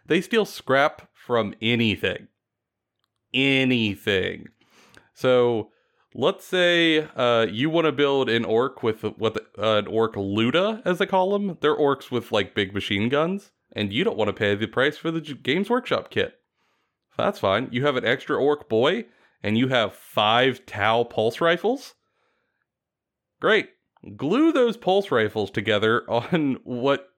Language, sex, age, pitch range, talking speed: English, male, 30-49, 110-180 Hz, 150 wpm